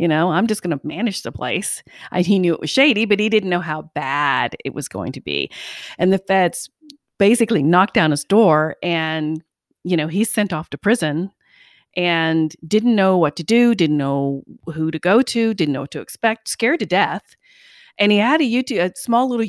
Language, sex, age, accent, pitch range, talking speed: English, female, 40-59, American, 160-220 Hz, 210 wpm